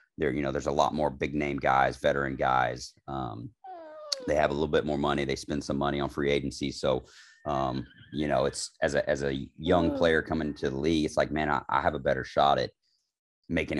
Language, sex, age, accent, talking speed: English, male, 30-49, American, 230 wpm